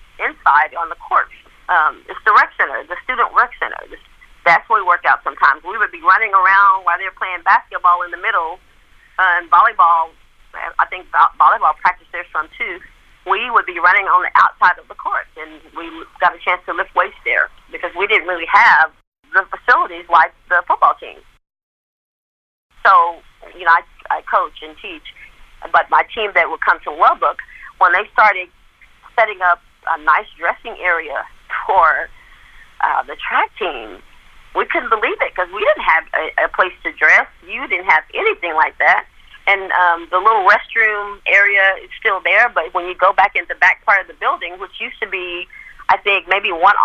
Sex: female